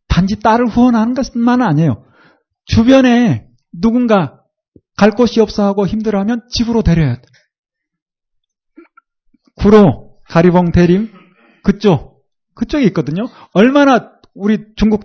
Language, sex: Korean, male